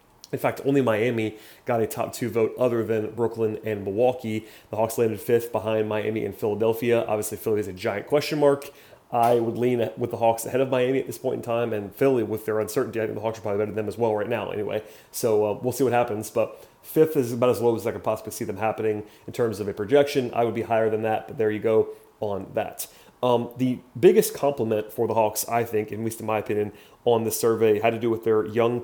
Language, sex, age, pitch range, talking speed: English, male, 30-49, 110-125 Hz, 250 wpm